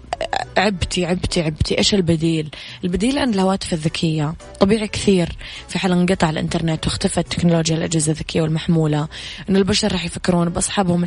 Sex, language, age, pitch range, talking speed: female, English, 20-39, 160-185 Hz, 130 wpm